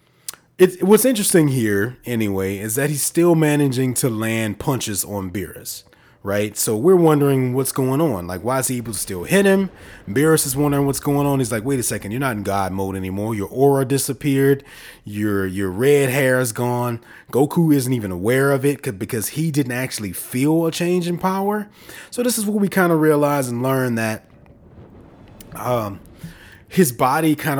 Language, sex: English, male